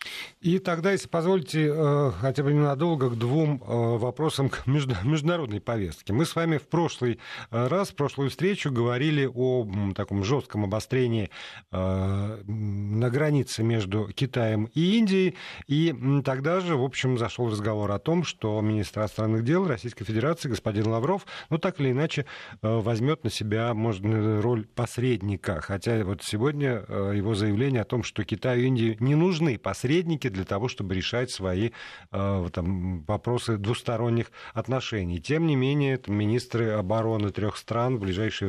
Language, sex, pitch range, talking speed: Russian, male, 105-140 Hz, 145 wpm